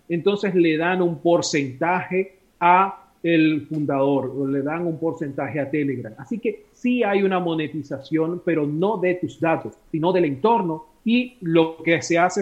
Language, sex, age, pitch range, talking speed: Spanish, male, 40-59, 155-185 Hz, 165 wpm